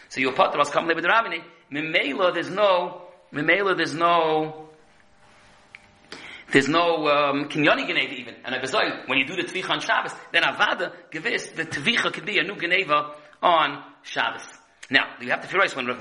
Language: English